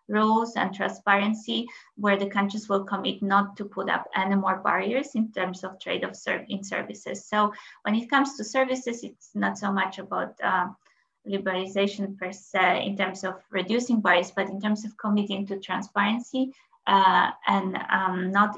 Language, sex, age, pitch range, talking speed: English, female, 20-39, 195-235 Hz, 175 wpm